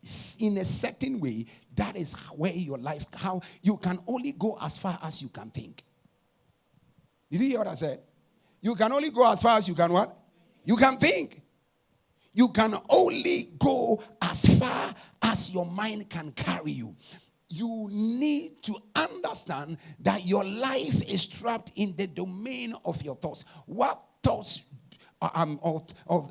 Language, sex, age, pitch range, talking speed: English, male, 50-69, 145-220 Hz, 160 wpm